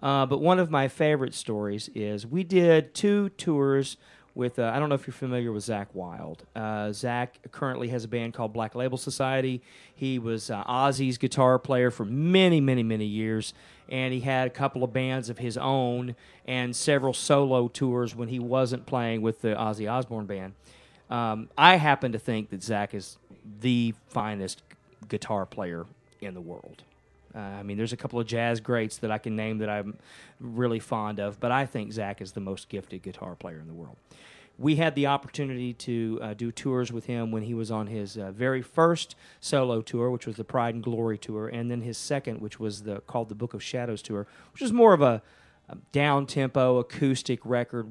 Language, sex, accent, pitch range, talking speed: English, male, American, 110-130 Hz, 205 wpm